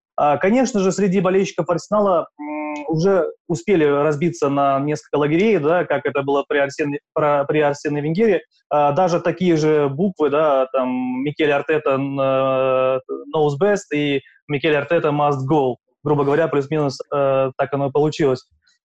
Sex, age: male, 20-39